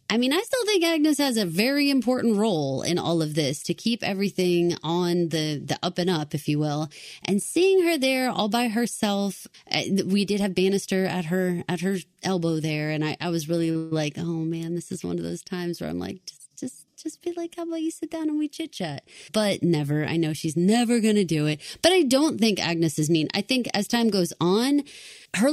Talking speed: 235 wpm